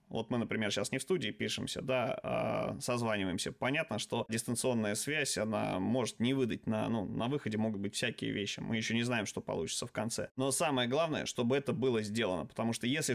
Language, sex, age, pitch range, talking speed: Russian, male, 20-39, 115-130 Hz, 200 wpm